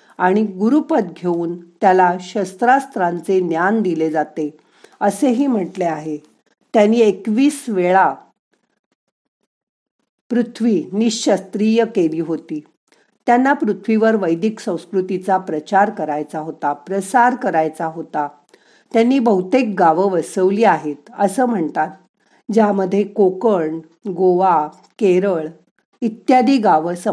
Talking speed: 80 wpm